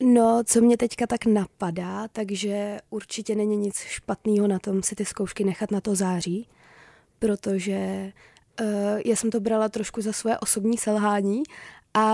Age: 20-39